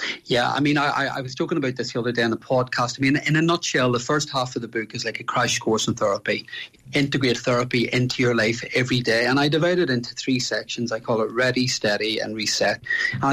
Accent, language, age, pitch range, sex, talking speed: Irish, English, 30-49, 115-135 Hz, male, 250 wpm